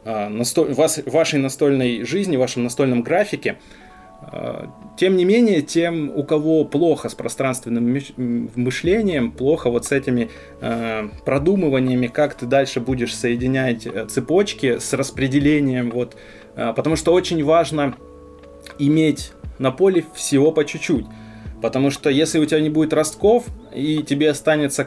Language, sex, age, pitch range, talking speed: Russian, male, 20-39, 120-155 Hz, 125 wpm